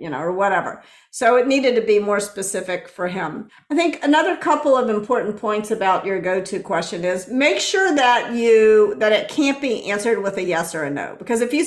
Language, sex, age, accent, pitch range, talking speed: English, female, 50-69, American, 195-270 Hz, 220 wpm